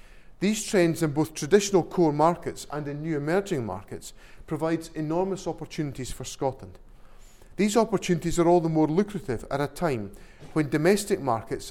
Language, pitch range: English, 135-175 Hz